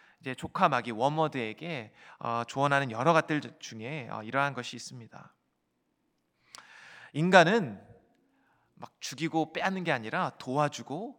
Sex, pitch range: male, 120-190 Hz